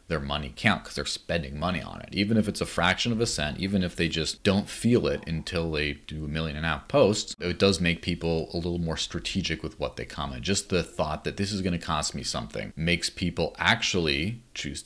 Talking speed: 240 wpm